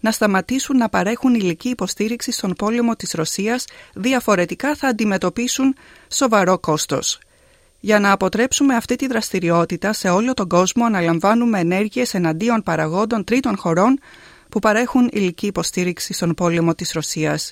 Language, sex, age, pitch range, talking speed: Greek, female, 30-49, 175-235 Hz, 135 wpm